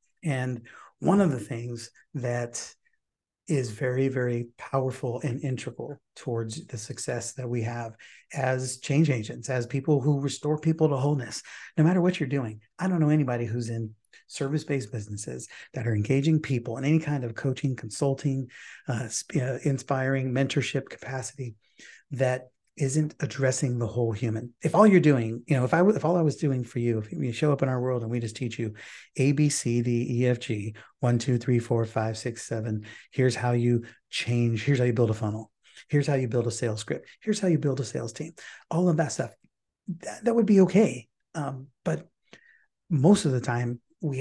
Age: 40-59